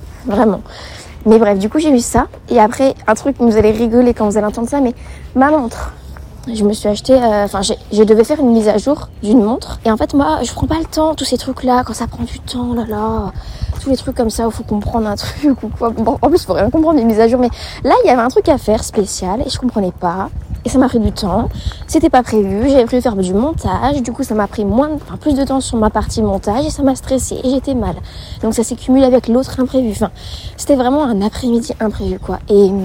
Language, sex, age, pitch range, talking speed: French, female, 20-39, 210-265 Hz, 265 wpm